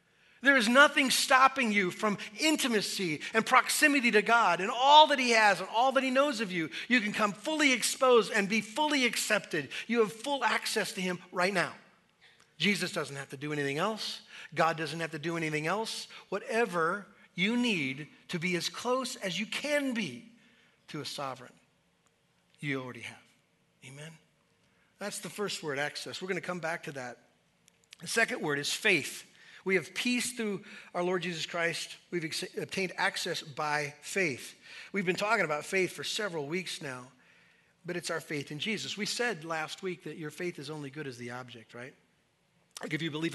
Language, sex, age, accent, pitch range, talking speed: English, male, 50-69, American, 150-220 Hz, 190 wpm